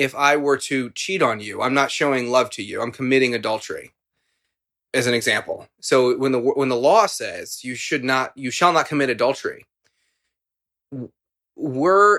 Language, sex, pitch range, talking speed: English, male, 120-145 Hz, 170 wpm